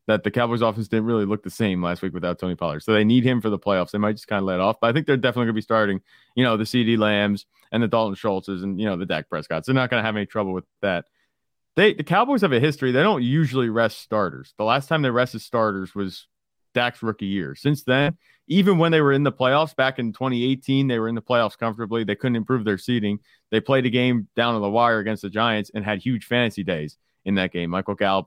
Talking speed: 270 wpm